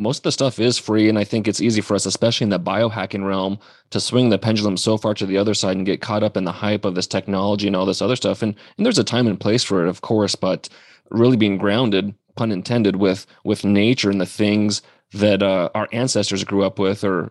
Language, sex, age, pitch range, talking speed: English, male, 20-39, 100-120 Hz, 255 wpm